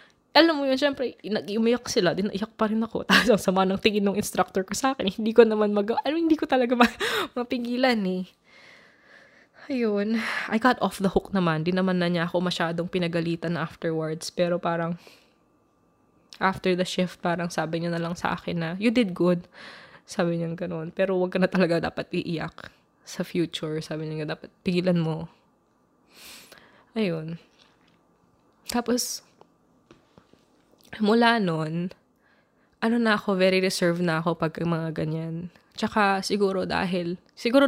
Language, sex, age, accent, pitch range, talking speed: Filipino, female, 20-39, native, 170-215 Hz, 155 wpm